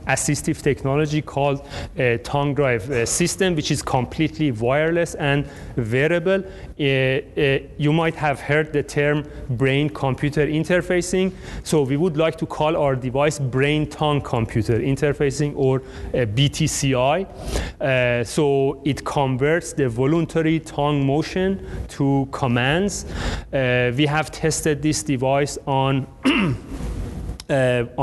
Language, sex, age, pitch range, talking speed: English, male, 30-49, 125-150 Hz, 120 wpm